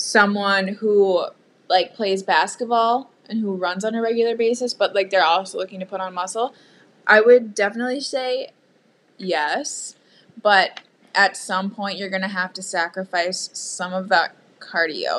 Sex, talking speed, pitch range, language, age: female, 155 wpm, 185-210 Hz, English, 20-39